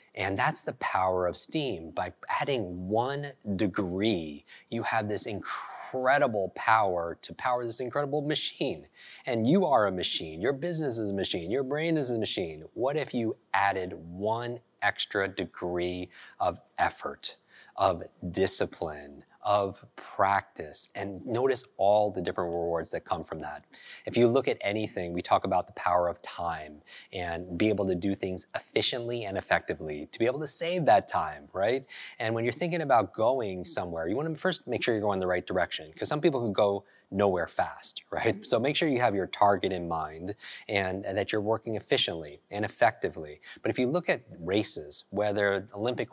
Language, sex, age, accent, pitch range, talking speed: English, male, 30-49, American, 90-120 Hz, 180 wpm